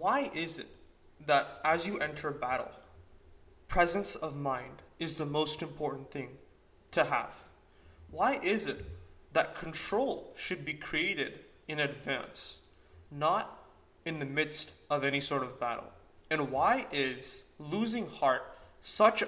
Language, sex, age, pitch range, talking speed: English, male, 20-39, 130-160 Hz, 135 wpm